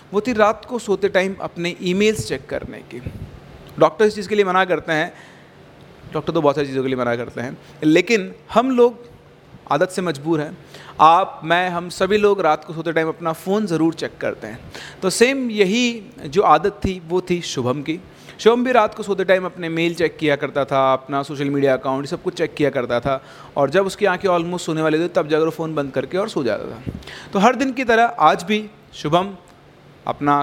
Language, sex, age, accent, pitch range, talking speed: Hindi, male, 30-49, native, 145-205 Hz, 215 wpm